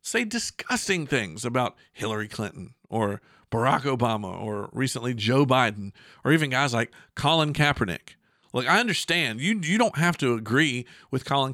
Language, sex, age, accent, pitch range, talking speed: English, male, 50-69, American, 120-185 Hz, 155 wpm